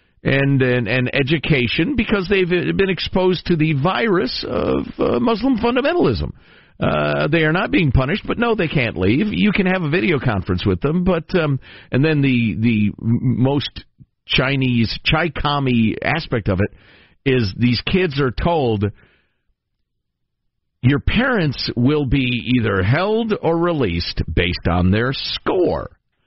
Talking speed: 145 wpm